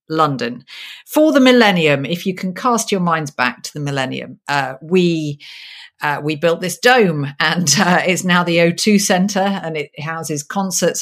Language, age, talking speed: English, 50-69, 175 wpm